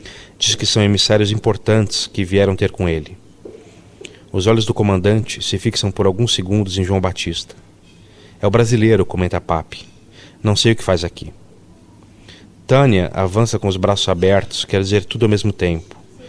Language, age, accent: Portuguese, 40-59, Brazilian